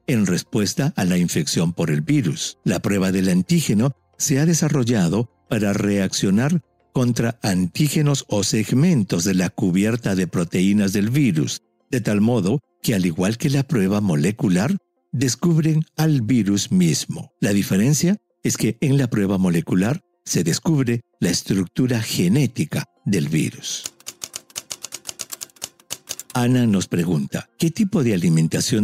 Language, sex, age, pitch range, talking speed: English, male, 60-79, 100-155 Hz, 135 wpm